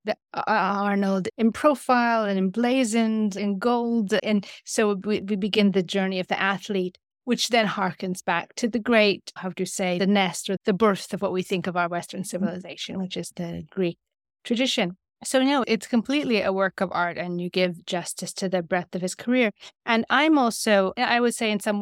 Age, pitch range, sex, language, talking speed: 30-49, 190-220 Hz, female, English, 200 wpm